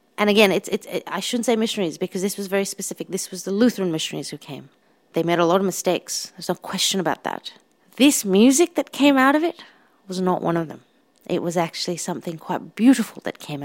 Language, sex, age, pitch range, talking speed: English, female, 30-49, 175-210 Hz, 215 wpm